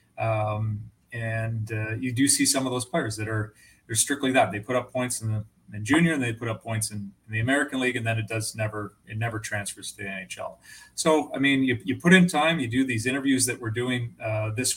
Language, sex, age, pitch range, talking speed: English, male, 30-49, 110-130 Hz, 250 wpm